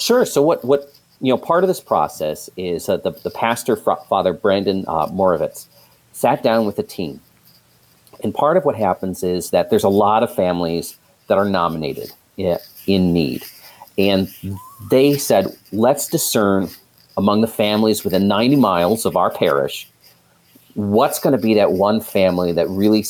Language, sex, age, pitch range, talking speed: English, male, 40-59, 90-115 Hz, 170 wpm